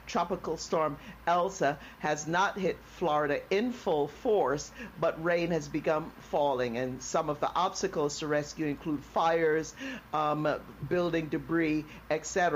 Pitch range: 150-180 Hz